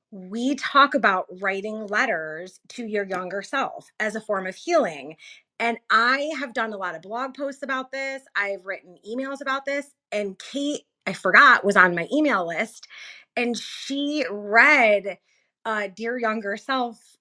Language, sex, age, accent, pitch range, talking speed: English, female, 30-49, American, 200-275 Hz, 160 wpm